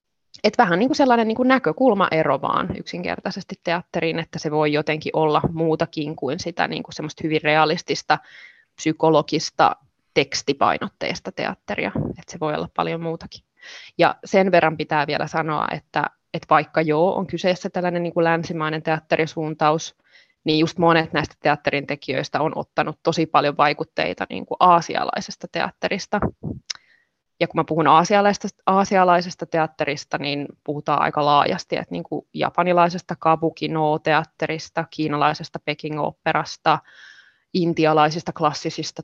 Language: Finnish